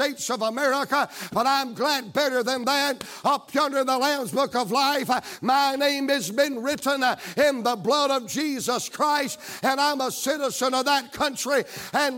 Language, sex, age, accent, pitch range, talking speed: English, male, 60-79, American, 250-290 Hz, 175 wpm